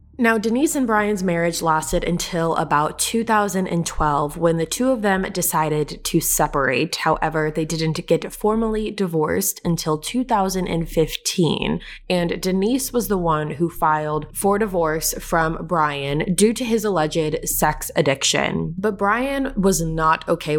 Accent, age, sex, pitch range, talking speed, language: American, 20-39, female, 160-210 Hz, 135 wpm, English